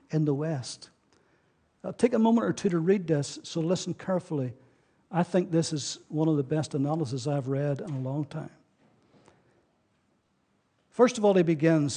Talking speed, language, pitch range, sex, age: 175 wpm, English, 160-200 Hz, male, 60-79